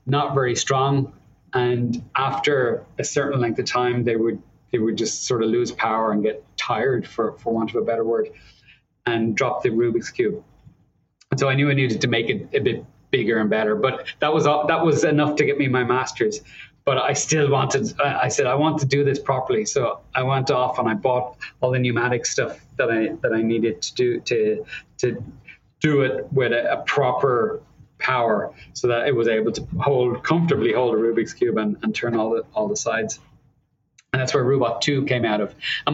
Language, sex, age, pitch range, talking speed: English, male, 30-49, 120-150 Hz, 210 wpm